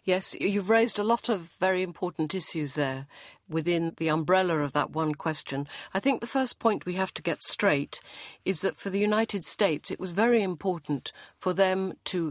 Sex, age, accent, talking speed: female, 50-69, British, 195 wpm